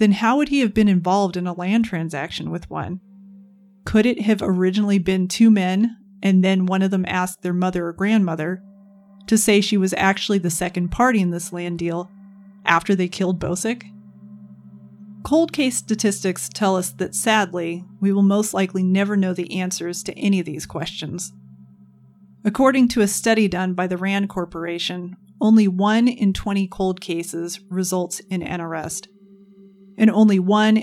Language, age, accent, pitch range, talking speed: English, 30-49, American, 175-205 Hz, 170 wpm